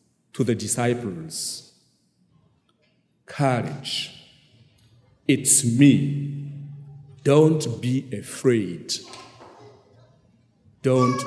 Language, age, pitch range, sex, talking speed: English, 50-69, 120-150 Hz, male, 55 wpm